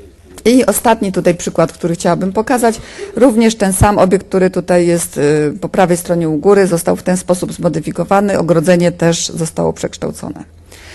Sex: female